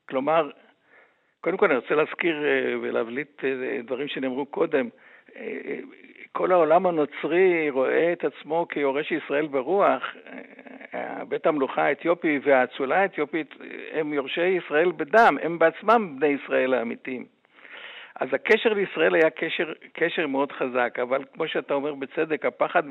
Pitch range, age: 140-175 Hz, 60-79